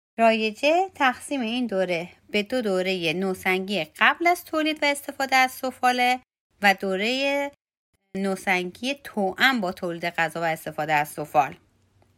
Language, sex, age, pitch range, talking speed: Persian, female, 30-49, 190-255 Hz, 130 wpm